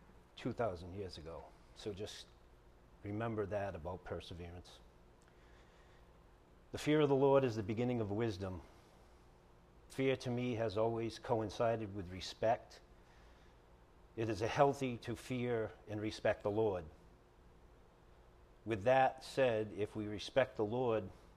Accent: American